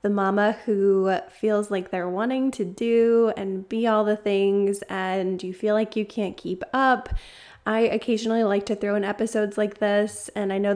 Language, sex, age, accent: English, female, 20-39, American